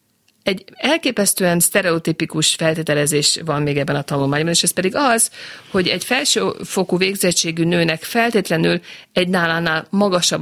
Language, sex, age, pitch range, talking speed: Hungarian, female, 50-69, 155-210 Hz, 125 wpm